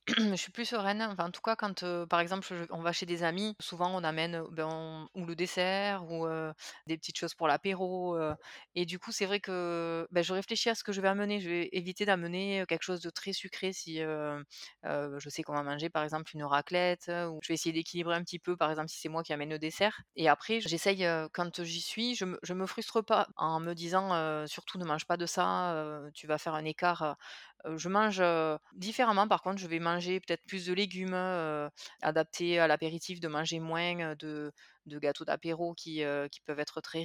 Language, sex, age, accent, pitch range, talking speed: French, female, 20-39, French, 155-185 Hz, 240 wpm